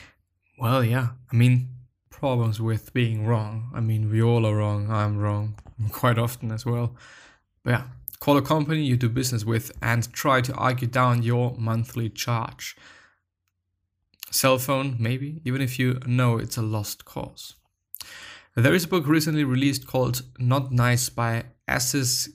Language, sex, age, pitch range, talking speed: English, male, 20-39, 110-130 Hz, 160 wpm